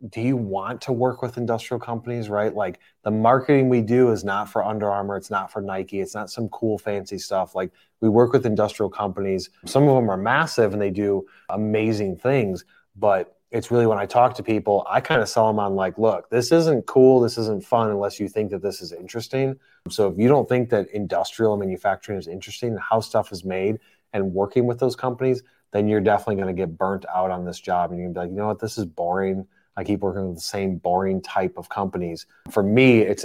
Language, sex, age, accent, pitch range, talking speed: English, male, 20-39, American, 95-115 Hz, 235 wpm